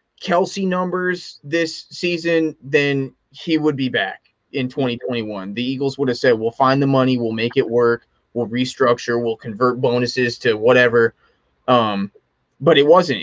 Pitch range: 120-150 Hz